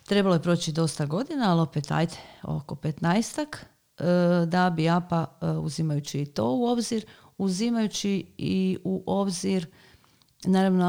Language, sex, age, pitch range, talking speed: Croatian, female, 40-59, 155-180 Hz, 125 wpm